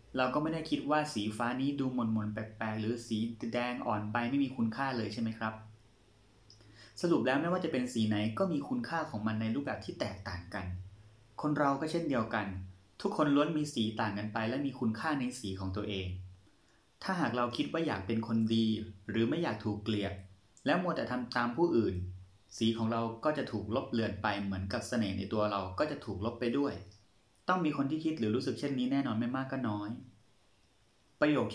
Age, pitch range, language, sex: 30-49, 105-130 Hz, Thai, male